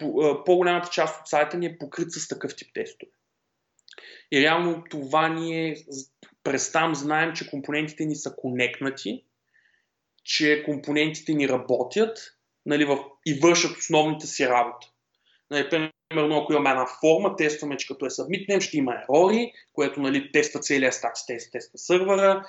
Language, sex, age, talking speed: Bulgarian, male, 20-39, 145 wpm